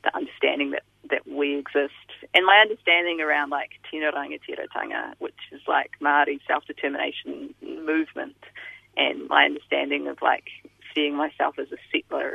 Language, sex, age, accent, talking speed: English, female, 30-49, Australian, 140 wpm